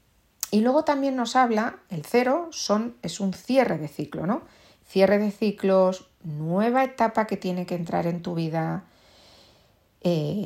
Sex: female